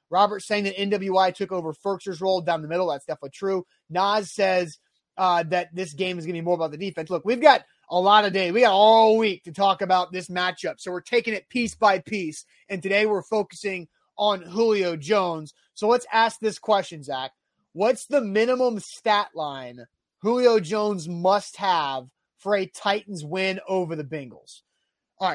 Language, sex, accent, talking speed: English, male, American, 190 wpm